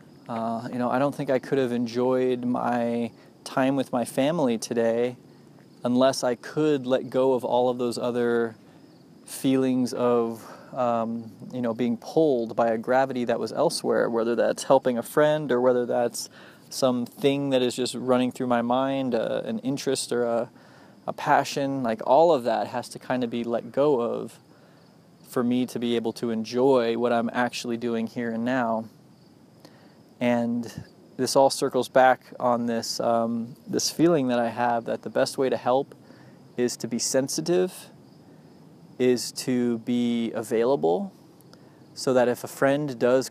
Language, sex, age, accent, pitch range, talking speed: English, male, 20-39, American, 120-130 Hz, 170 wpm